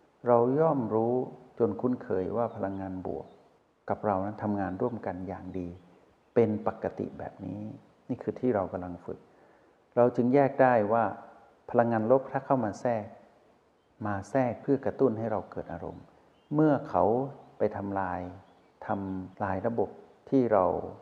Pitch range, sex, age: 95-120 Hz, male, 60-79